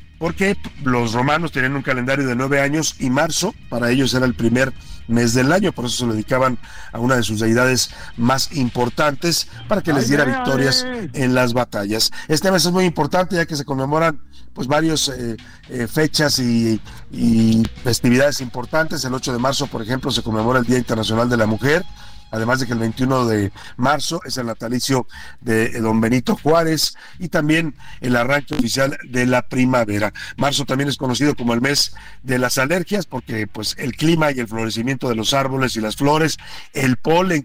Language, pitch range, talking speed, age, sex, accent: Spanish, 120-150 Hz, 185 wpm, 50-69, male, Mexican